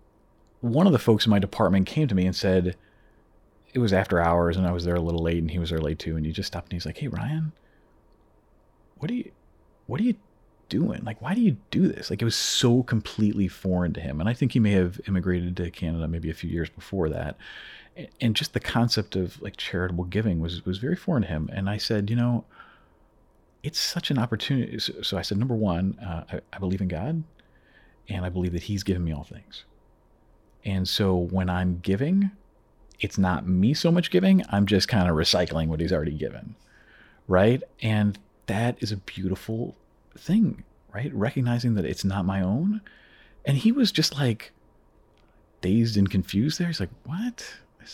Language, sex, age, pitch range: English, male, 40-59, 90-150 Hz